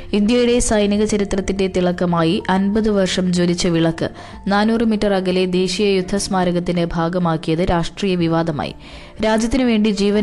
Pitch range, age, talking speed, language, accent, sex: 170-200 Hz, 20-39, 105 wpm, Malayalam, native, female